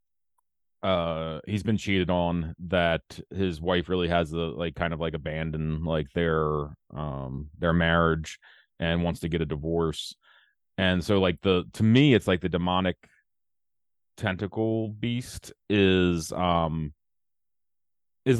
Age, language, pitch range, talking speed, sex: 30-49, English, 90-110 Hz, 135 wpm, male